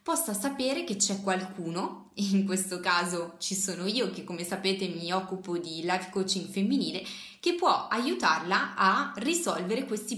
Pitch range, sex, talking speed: 180-225 Hz, female, 155 wpm